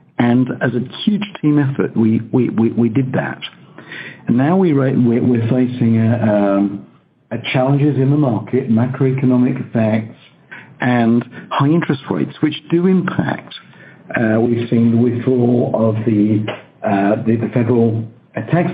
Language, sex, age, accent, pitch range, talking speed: English, male, 60-79, British, 115-140 Hz, 145 wpm